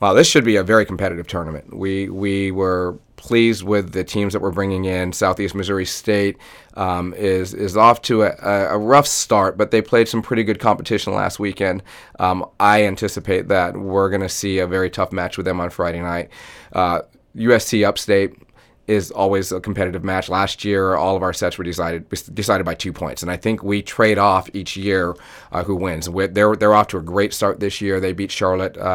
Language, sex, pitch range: English, male, 90-105 Hz